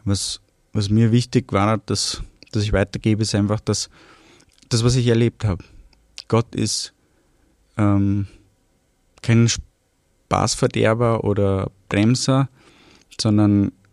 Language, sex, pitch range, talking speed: German, male, 95-110 Hz, 110 wpm